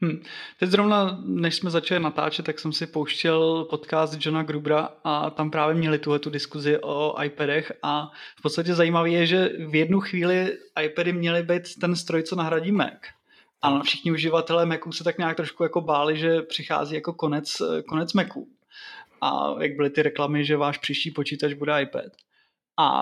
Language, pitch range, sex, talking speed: Czech, 150-170 Hz, male, 175 wpm